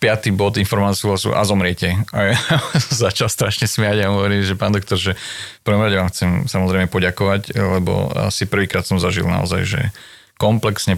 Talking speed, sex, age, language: 165 wpm, male, 30-49, Slovak